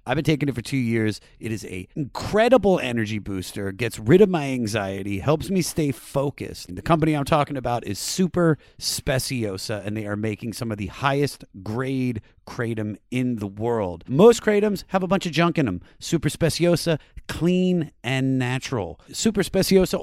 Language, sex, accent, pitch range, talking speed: English, male, American, 110-165 Hz, 175 wpm